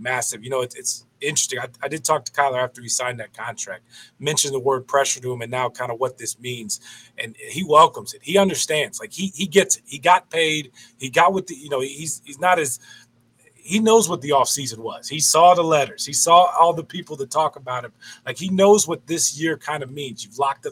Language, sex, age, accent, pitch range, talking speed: English, male, 30-49, American, 125-160 Hz, 245 wpm